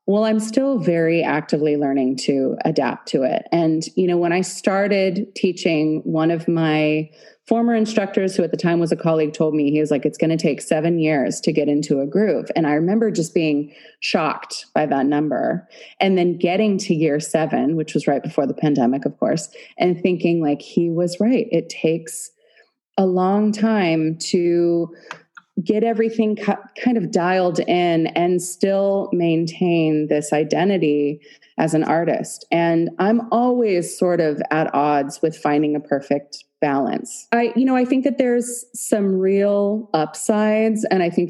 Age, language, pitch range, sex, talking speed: 30-49, English, 155-200 Hz, female, 175 wpm